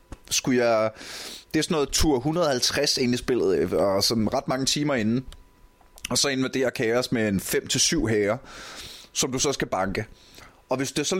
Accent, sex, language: native, male, Danish